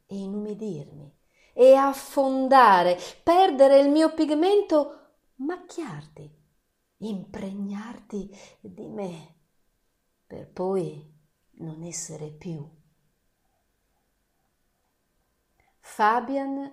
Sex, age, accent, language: female, 40-59, native, Italian